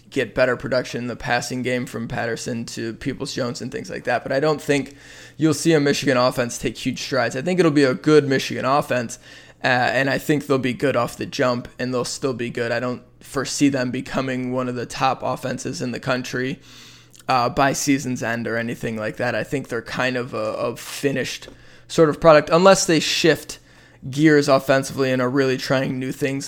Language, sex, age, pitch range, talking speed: English, male, 20-39, 125-140 Hz, 210 wpm